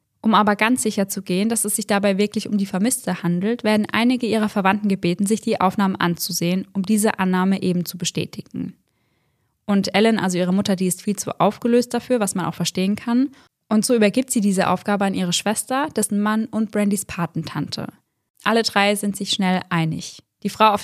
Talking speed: 200 wpm